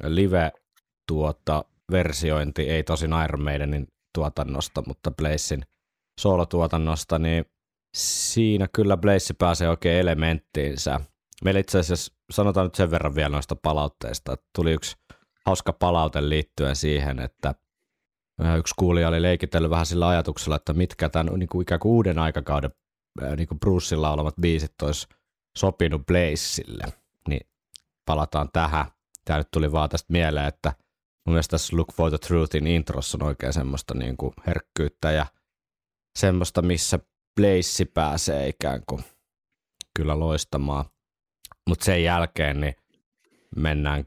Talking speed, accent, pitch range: 130 wpm, native, 75-85 Hz